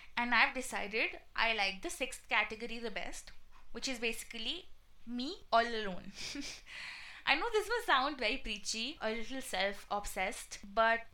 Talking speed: 145 wpm